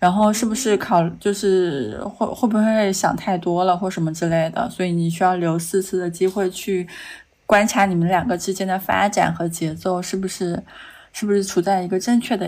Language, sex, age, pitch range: Chinese, female, 20-39, 175-215 Hz